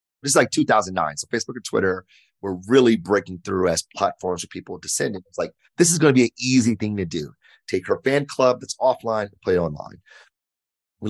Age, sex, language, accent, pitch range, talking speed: 30-49, male, English, American, 95-120 Hz, 210 wpm